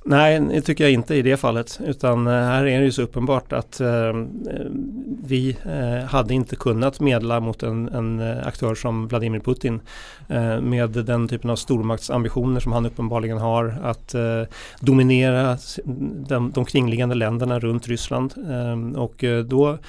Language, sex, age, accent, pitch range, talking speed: Swedish, male, 30-49, native, 120-140 Hz, 155 wpm